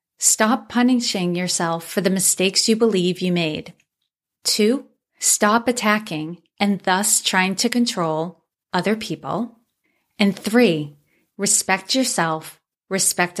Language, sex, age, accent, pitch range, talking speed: English, female, 30-49, American, 180-225 Hz, 110 wpm